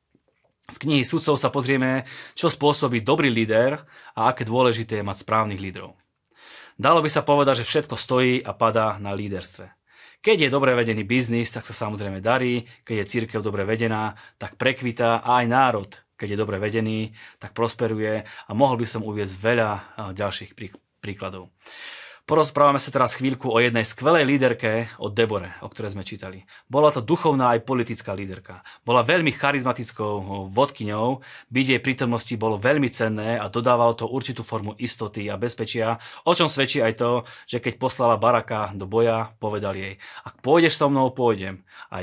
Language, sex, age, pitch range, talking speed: Slovak, male, 30-49, 105-125 Hz, 165 wpm